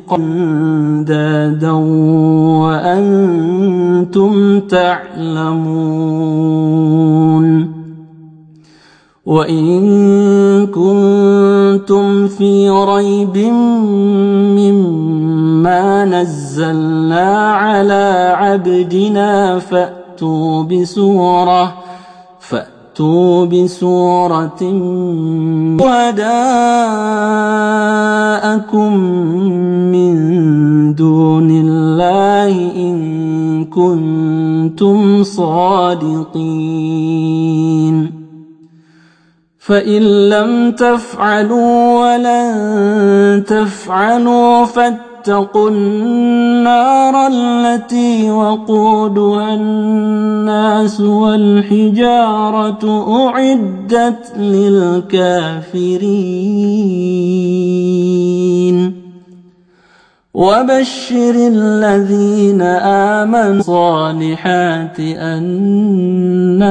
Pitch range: 165-210 Hz